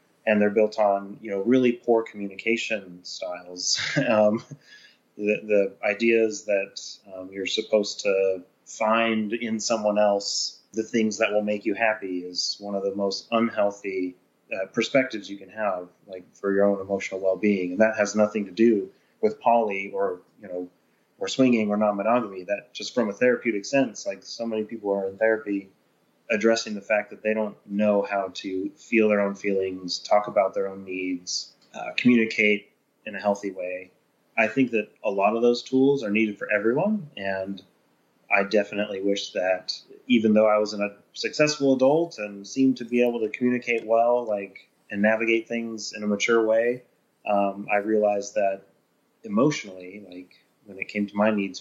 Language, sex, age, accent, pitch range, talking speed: English, male, 30-49, American, 100-115 Hz, 175 wpm